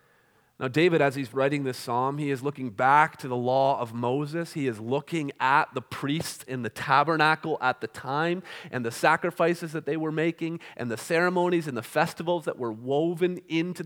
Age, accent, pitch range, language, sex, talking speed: 30-49, American, 140-180 Hz, English, male, 195 wpm